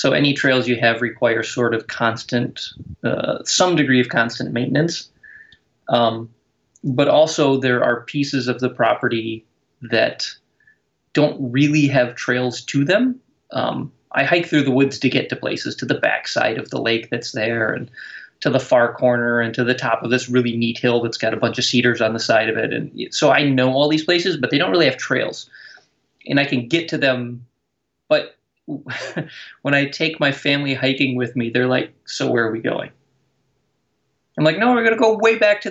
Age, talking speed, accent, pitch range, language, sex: 20-39, 200 wpm, American, 120-150 Hz, English, male